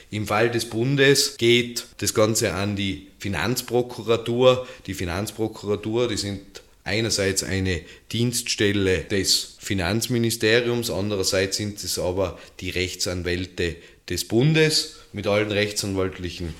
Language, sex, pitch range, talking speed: German, male, 95-110 Hz, 110 wpm